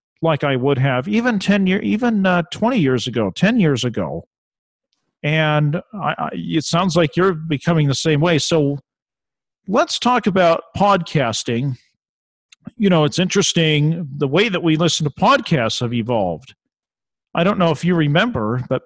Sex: male